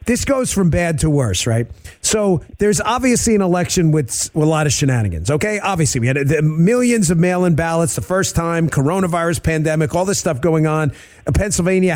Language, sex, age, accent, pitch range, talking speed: English, male, 40-59, American, 155-220 Hz, 180 wpm